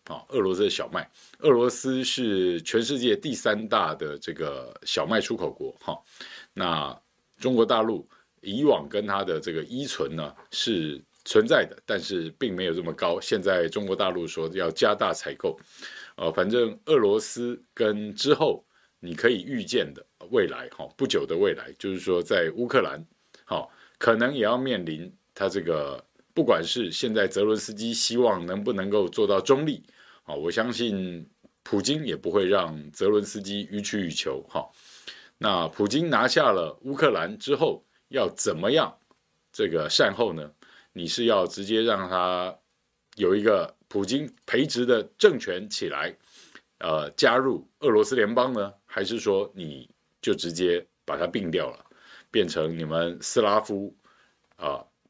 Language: Chinese